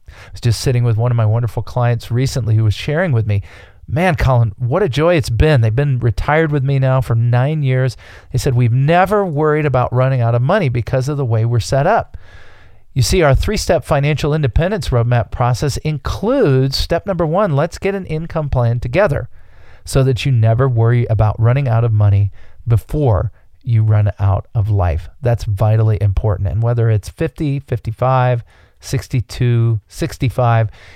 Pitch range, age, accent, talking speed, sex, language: 105-140 Hz, 40-59, American, 180 wpm, male, English